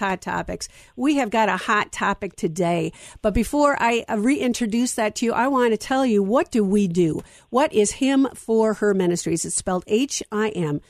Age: 50-69